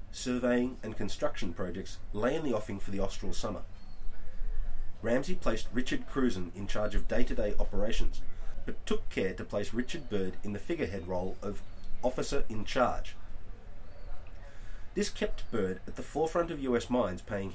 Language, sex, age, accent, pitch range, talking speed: English, male, 30-49, Australian, 95-115 Hz, 155 wpm